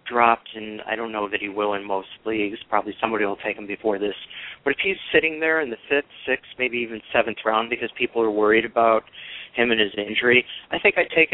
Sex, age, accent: male, 40-59, American